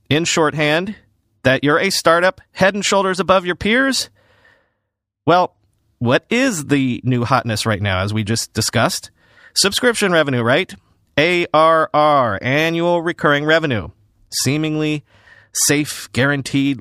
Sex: male